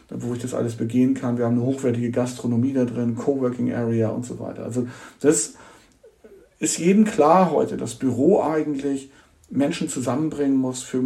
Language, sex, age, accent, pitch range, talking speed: German, male, 50-69, German, 115-135 Hz, 165 wpm